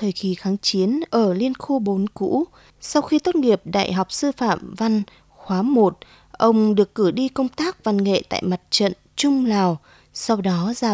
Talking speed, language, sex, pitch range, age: 195 wpm, Vietnamese, female, 200-270 Hz, 20-39